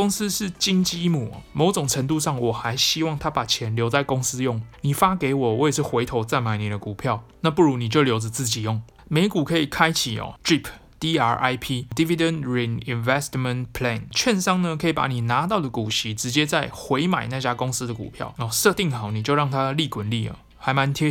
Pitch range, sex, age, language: 120-160 Hz, male, 20-39, Chinese